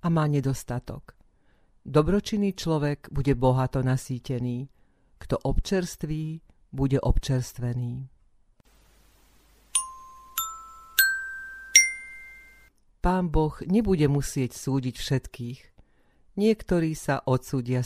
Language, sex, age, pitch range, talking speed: Slovak, female, 50-69, 130-190 Hz, 70 wpm